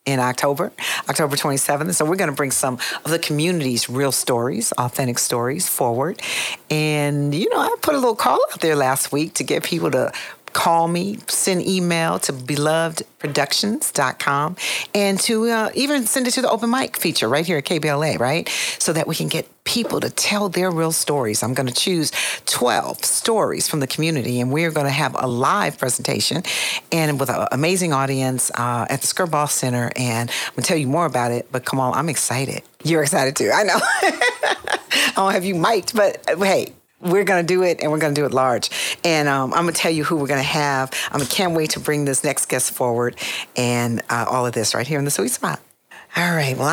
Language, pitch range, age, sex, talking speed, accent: English, 130-175 Hz, 50-69, female, 215 wpm, American